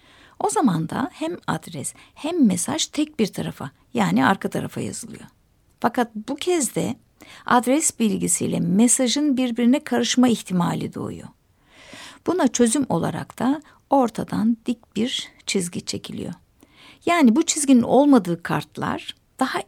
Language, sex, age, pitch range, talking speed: Turkish, female, 60-79, 215-290 Hz, 120 wpm